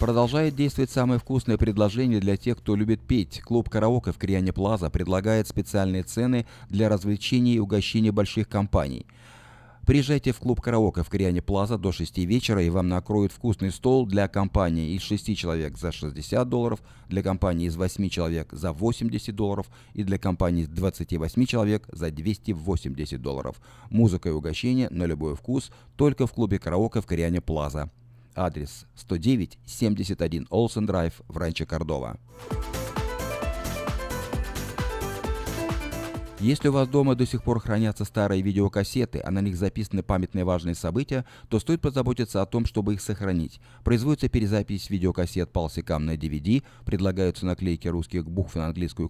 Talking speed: 150 wpm